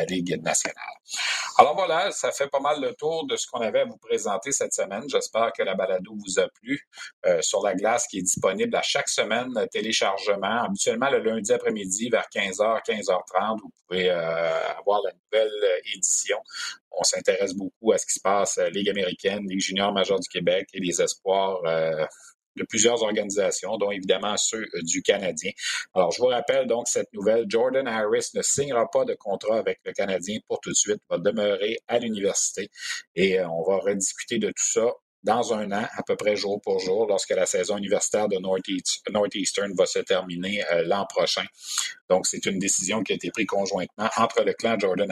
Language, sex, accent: French, male, Canadian